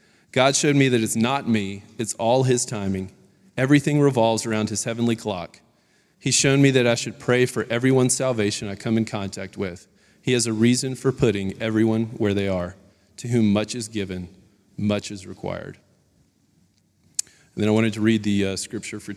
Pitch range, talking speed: 105-125 Hz, 190 wpm